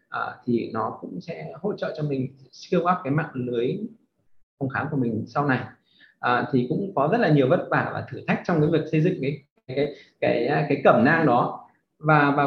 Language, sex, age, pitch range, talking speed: Vietnamese, male, 20-39, 130-175 Hz, 225 wpm